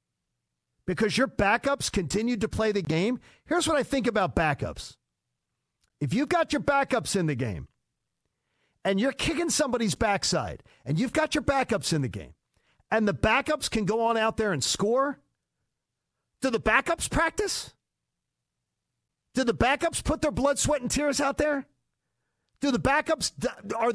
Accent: American